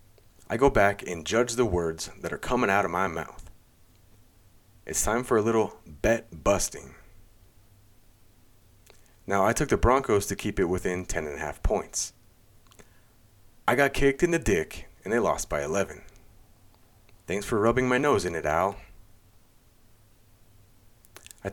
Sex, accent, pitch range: male, American, 95-110 Hz